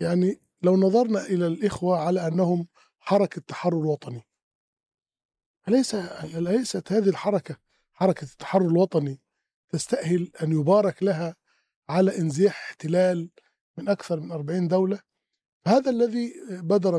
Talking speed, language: 115 wpm, Arabic